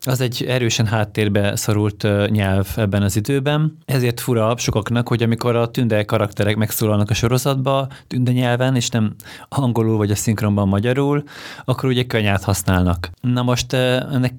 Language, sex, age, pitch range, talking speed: Hungarian, male, 20-39, 100-120 Hz, 150 wpm